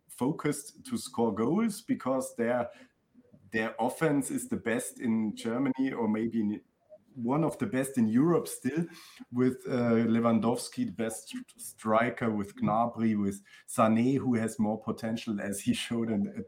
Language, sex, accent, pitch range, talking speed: English, male, German, 115-160 Hz, 150 wpm